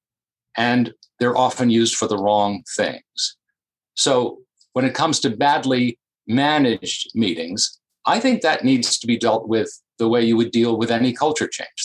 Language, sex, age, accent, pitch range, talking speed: English, male, 50-69, American, 115-145 Hz, 165 wpm